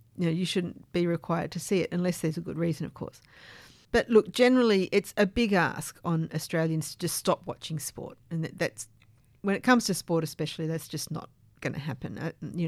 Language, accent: English, Australian